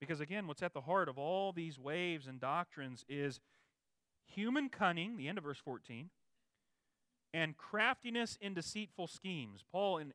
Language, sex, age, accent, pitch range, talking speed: English, male, 40-59, American, 130-175 Hz, 160 wpm